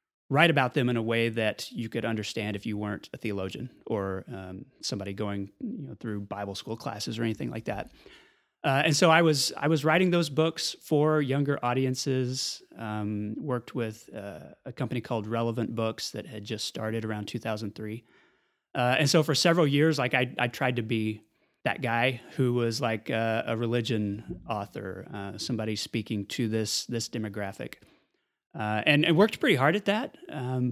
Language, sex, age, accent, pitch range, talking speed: English, male, 30-49, American, 115-160 Hz, 190 wpm